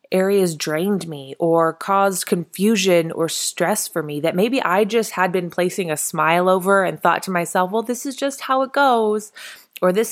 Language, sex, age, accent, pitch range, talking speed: English, female, 20-39, American, 170-215 Hz, 195 wpm